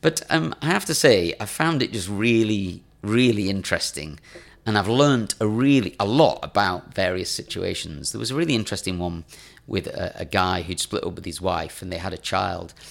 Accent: British